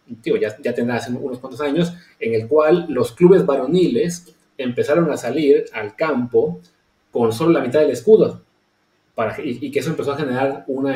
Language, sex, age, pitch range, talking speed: English, male, 30-49, 135-215 Hz, 185 wpm